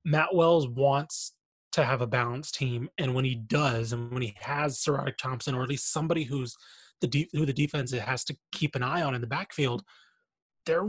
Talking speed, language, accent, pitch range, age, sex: 210 wpm, English, American, 130-175 Hz, 20-39, male